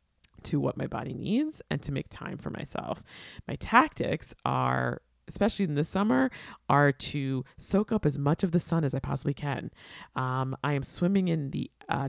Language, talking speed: English, 190 wpm